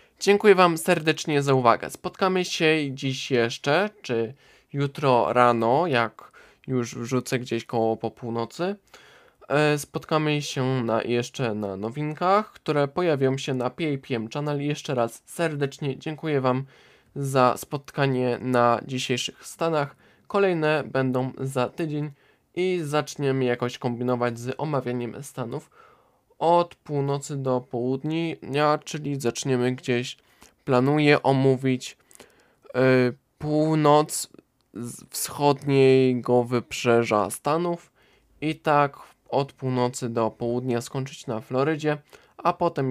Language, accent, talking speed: Polish, native, 110 wpm